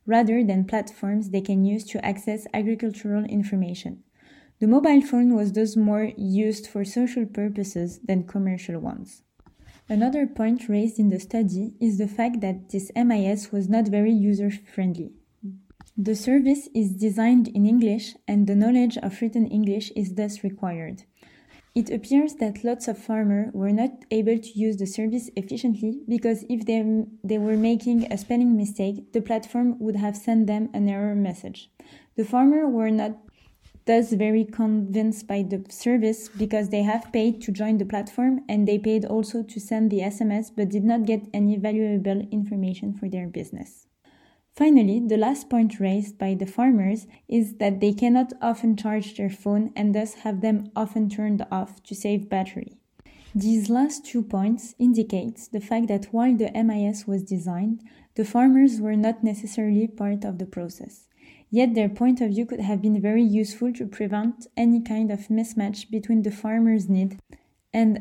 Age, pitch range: 20-39, 205-230 Hz